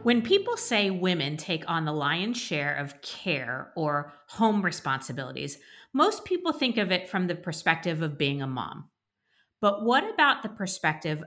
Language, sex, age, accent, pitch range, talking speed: English, female, 40-59, American, 155-220 Hz, 165 wpm